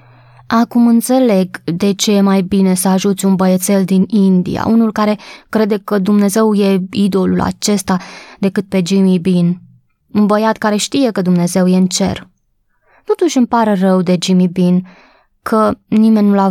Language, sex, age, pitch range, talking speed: Romanian, female, 20-39, 180-210 Hz, 165 wpm